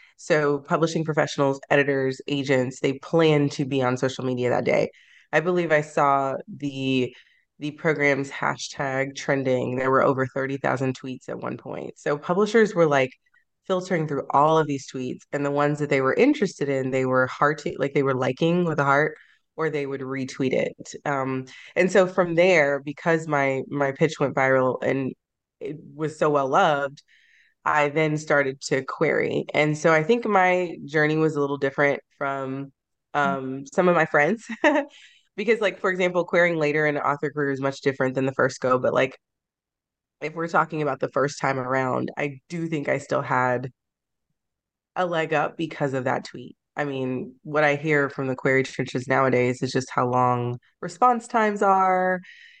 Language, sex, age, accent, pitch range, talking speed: English, female, 20-39, American, 135-165 Hz, 180 wpm